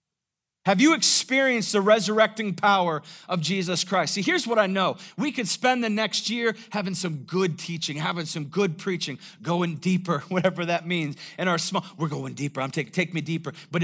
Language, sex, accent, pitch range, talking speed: English, male, American, 175-265 Hz, 195 wpm